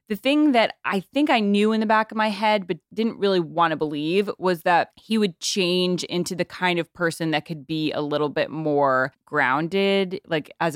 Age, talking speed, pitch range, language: 20-39, 220 wpm, 150-180 Hz, English